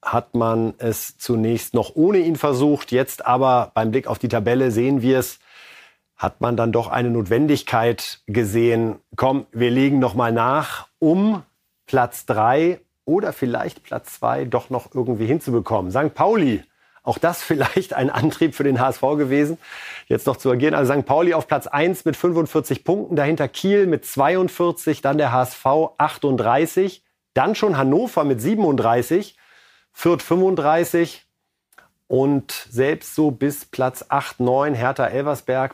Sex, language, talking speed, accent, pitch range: male, German, 150 wpm, German, 125-160 Hz